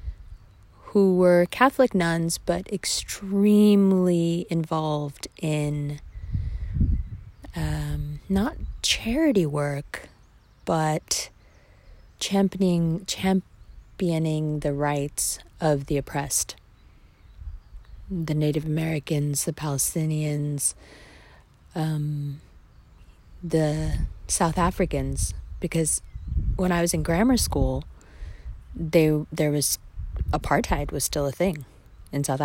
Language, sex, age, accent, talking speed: English, female, 30-49, American, 85 wpm